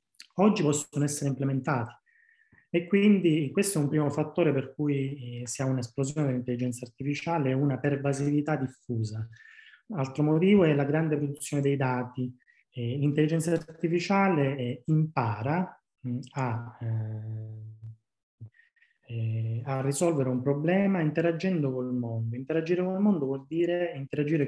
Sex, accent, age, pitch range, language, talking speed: male, native, 20-39, 130-160 Hz, Italian, 130 wpm